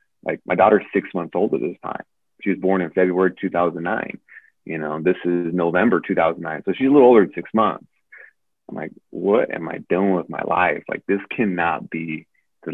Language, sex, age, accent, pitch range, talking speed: English, male, 30-49, American, 85-95 Hz, 205 wpm